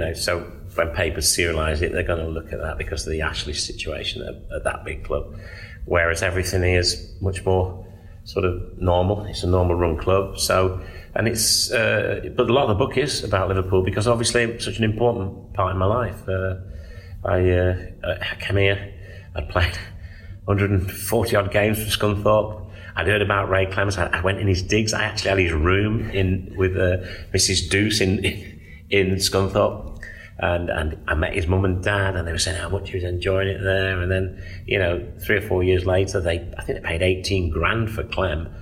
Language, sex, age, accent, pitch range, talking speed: English, male, 30-49, British, 90-100 Hz, 205 wpm